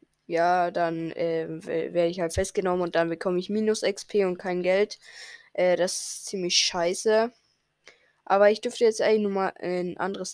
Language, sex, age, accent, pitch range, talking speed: German, female, 20-39, German, 180-225 Hz, 180 wpm